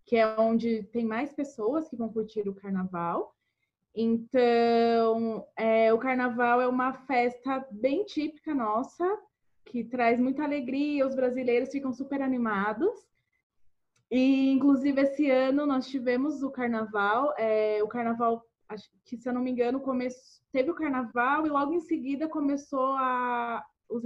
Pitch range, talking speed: 220-270 Hz, 145 wpm